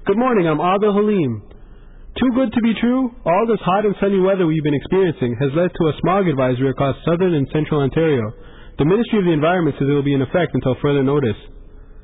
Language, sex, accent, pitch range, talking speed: English, male, American, 130-180 Hz, 220 wpm